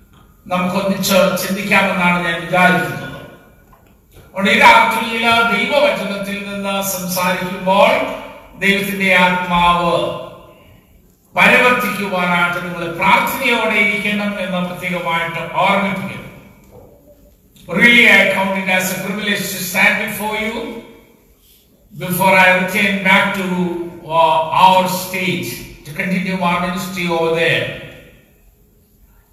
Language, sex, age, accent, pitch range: Malayalam, male, 60-79, native, 180-215 Hz